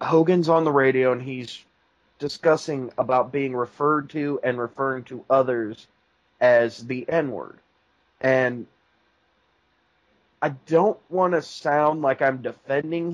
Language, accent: English, American